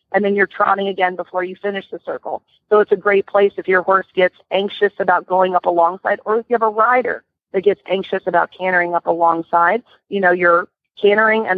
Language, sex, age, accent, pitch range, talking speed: English, female, 40-59, American, 175-205 Hz, 220 wpm